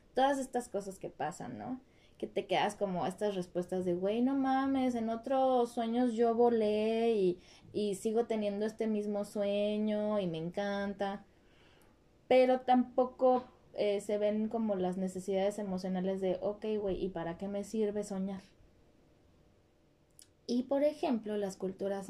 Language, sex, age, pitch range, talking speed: Spanish, female, 20-39, 190-230 Hz, 145 wpm